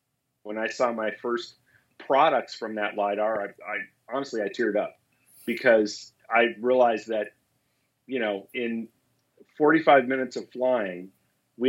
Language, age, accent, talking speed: English, 40-59, American, 140 wpm